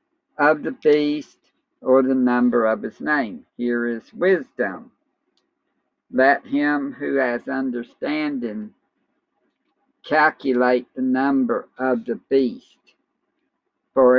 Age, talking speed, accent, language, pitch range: 50-69, 100 wpm, American, English, 125-175 Hz